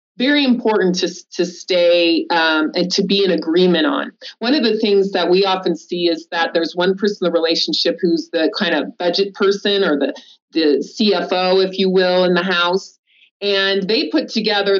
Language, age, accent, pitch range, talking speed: English, 30-49, American, 180-220 Hz, 195 wpm